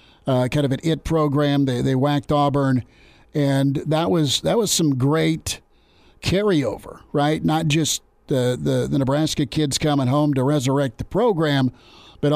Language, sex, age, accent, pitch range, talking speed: English, male, 50-69, American, 130-150 Hz, 160 wpm